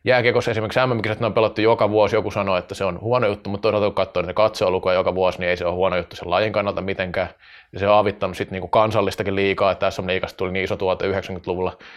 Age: 20-39